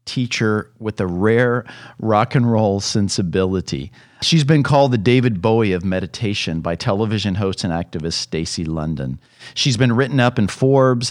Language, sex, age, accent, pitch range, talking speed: English, male, 40-59, American, 95-125 Hz, 155 wpm